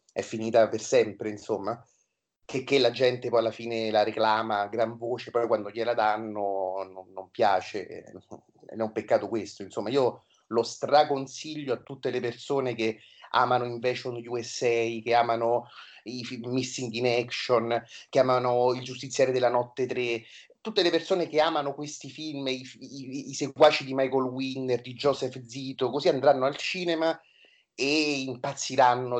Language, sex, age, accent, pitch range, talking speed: Italian, male, 30-49, native, 115-135 Hz, 160 wpm